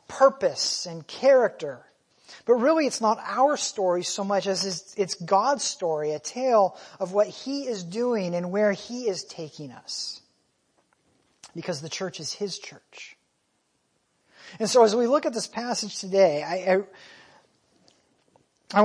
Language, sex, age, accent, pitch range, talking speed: English, male, 40-59, American, 170-215 Hz, 145 wpm